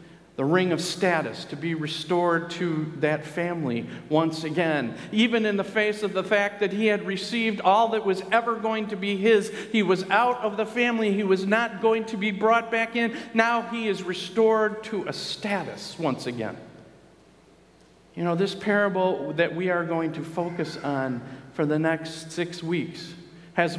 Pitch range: 170-210 Hz